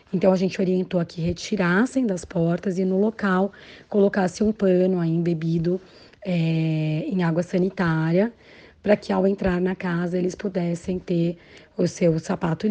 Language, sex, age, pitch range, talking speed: Portuguese, female, 30-49, 170-205 Hz, 150 wpm